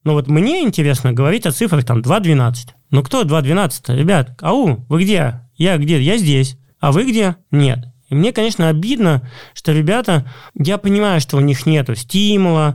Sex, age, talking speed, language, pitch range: male, 20-39, 180 wpm, Russian, 130-165 Hz